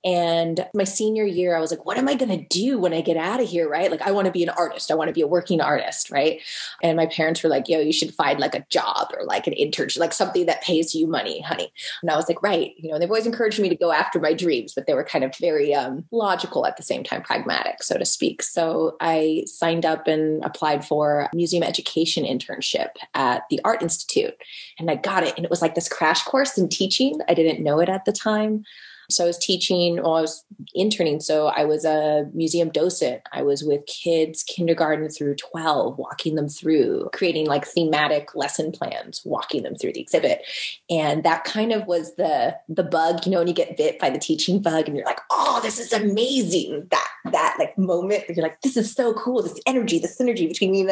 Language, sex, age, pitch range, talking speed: English, female, 20-39, 160-210 Hz, 235 wpm